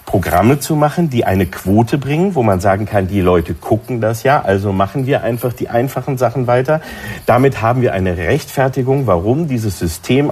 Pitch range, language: 110-140 Hz, German